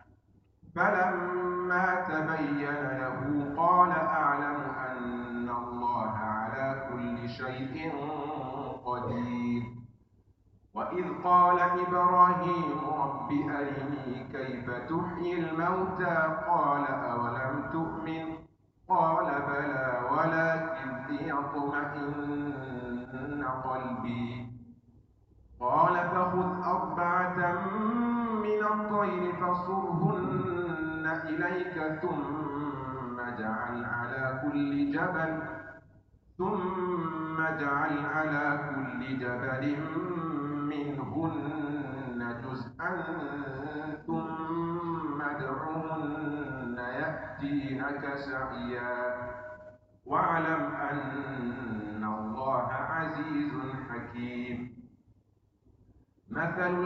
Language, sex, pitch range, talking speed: English, male, 125-160 Hz, 55 wpm